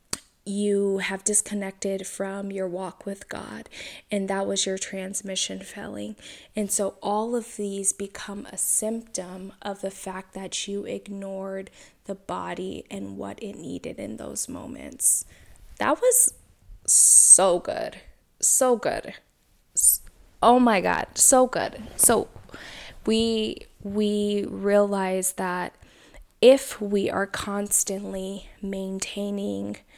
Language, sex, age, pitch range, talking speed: English, female, 10-29, 195-220 Hz, 115 wpm